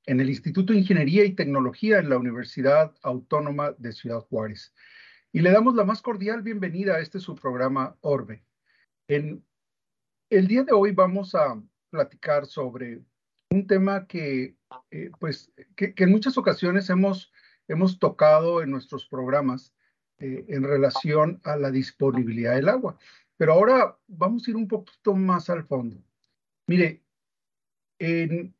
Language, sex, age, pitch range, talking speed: Spanish, male, 50-69, 135-190 Hz, 145 wpm